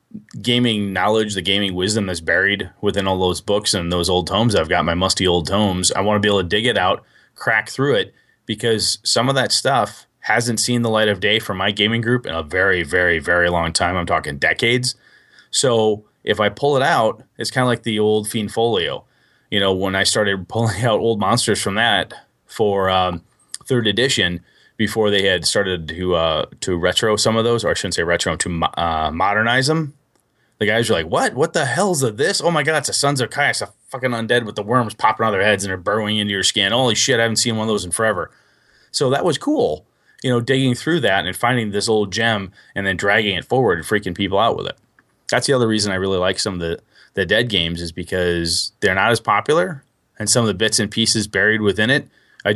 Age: 30-49